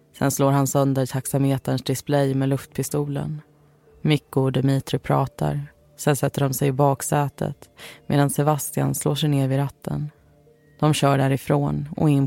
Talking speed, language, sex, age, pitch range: 145 wpm, Swedish, female, 20-39, 130-145 Hz